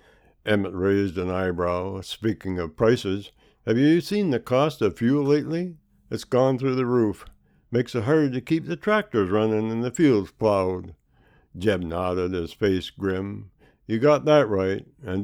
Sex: male